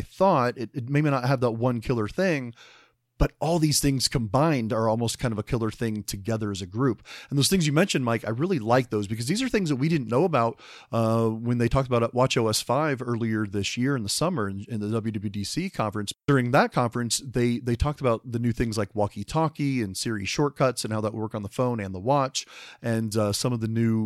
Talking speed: 240 wpm